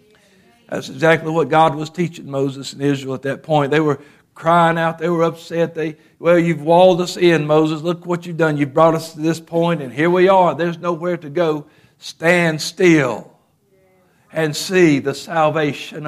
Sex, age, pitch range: male, 60-79, 145-170 Hz